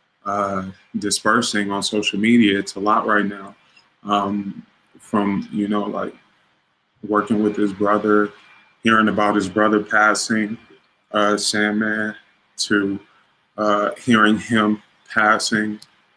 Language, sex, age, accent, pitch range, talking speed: English, male, 20-39, American, 105-110 Hz, 110 wpm